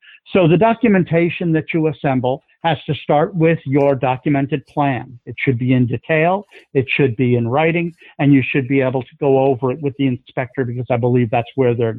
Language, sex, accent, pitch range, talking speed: English, male, American, 135-155 Hz, 205 wpm